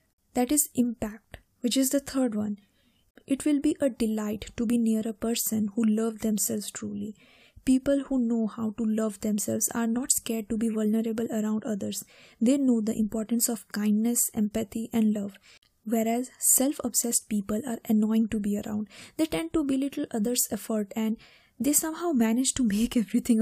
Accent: Indian